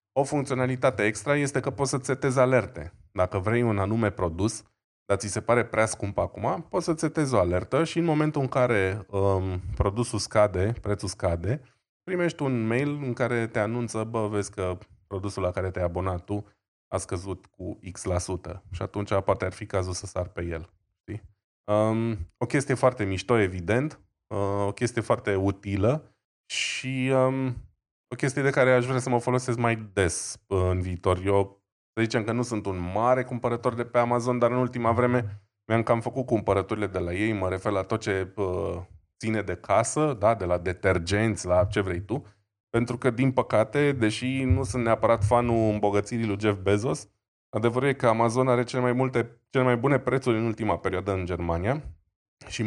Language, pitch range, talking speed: Romanian, 100-125 Hz, 180 wpm